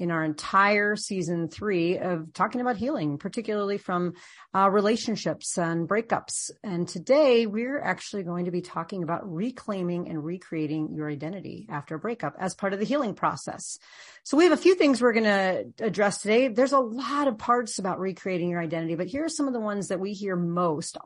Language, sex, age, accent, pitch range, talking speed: English, female, 40-59, American, 170-225 Hz, 195 wpm